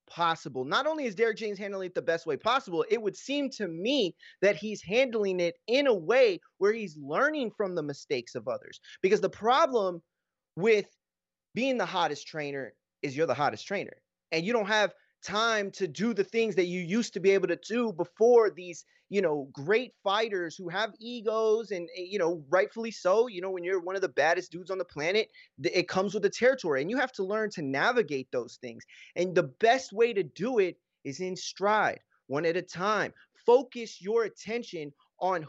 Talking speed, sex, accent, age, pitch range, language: 205 wpm, male, American, 30-49, 180-235 Hz, English